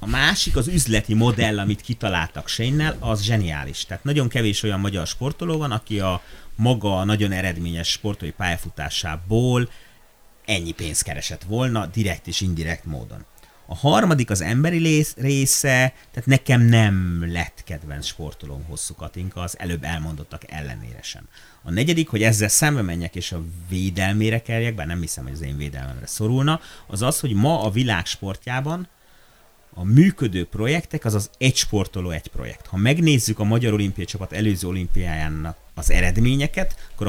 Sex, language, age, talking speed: male, Hungarian, 30-49, 150 wpm